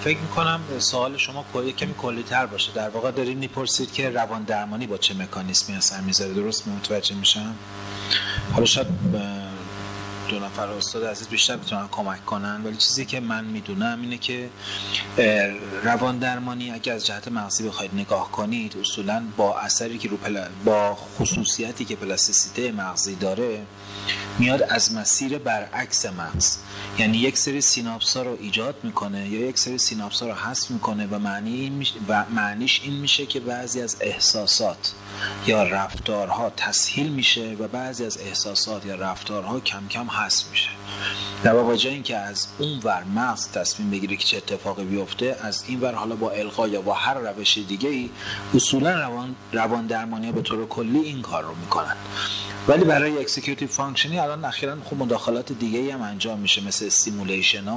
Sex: male